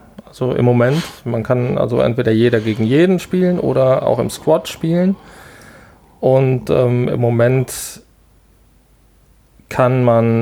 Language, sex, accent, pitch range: German, male, German, 115-135 Hz